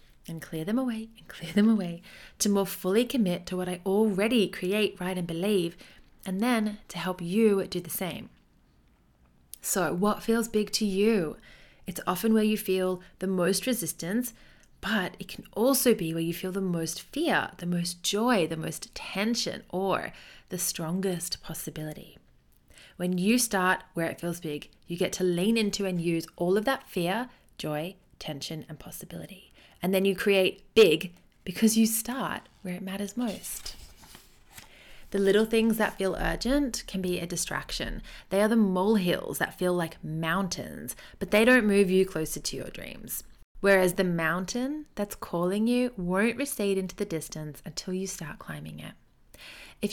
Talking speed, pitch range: 170 wpm, 170-210 Hz